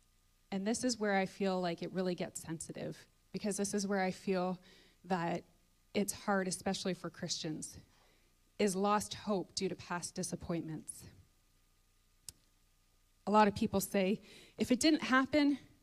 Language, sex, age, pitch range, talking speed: English, female, 20-39, 190-265 Hz, 150 wpm